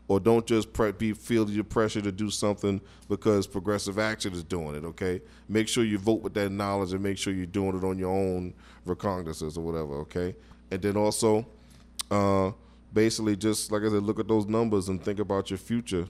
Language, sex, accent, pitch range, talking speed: English, male, American, 90-110 Hz, 210 wpm